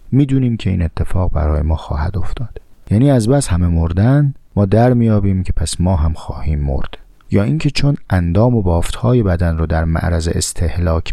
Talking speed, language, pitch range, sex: 180 wpm, Persian, 85-115 Hz, male